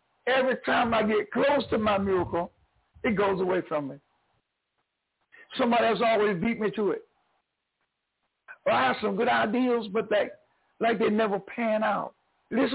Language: English